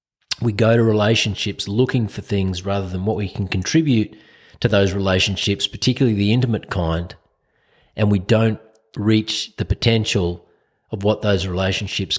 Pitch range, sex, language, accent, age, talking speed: 95-115 Hz, male, English, Australian, 40-59, 150 wpm